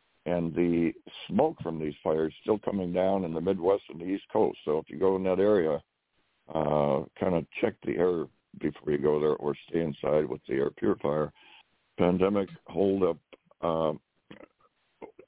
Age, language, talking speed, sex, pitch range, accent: 60-79, English, 175 wpm, male, 80-95 Hz, American